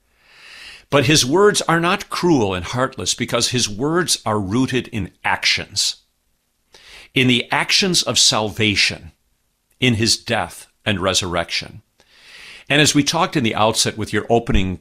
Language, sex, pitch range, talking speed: English, male, 90-125 Hz, 140 wpm